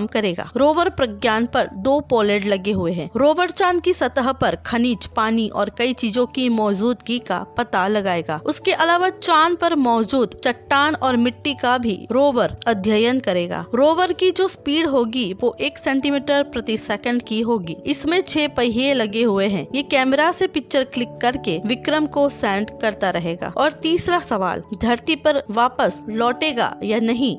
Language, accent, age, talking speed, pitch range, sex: Hindi, native, 20-39, 165 wpm, 220-285 Hz, female